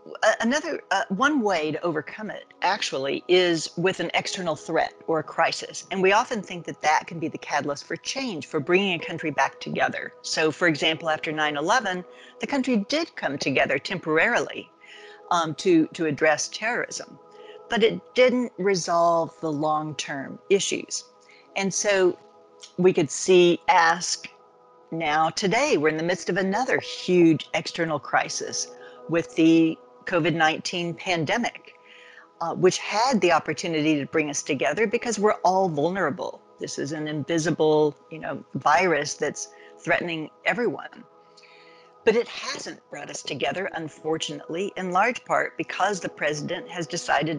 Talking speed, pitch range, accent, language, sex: 145 wpm, 155-195 Hz, American, English, female